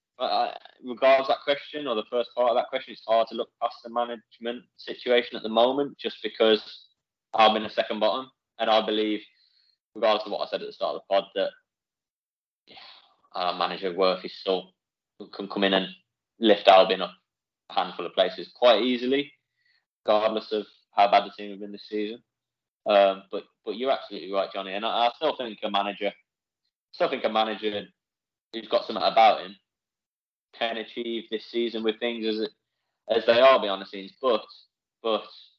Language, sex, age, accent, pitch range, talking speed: English, male, 20-39, British, 100-120 Hz, 185 wpm